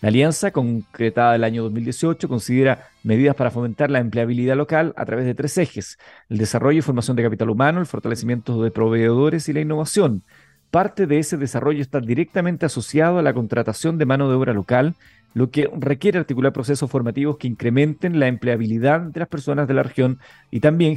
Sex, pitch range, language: male, 120-150 Hz, Spanish